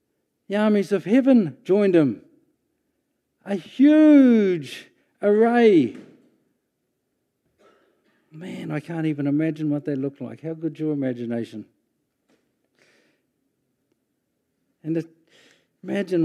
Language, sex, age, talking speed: English, male, 60-79, 90 wpm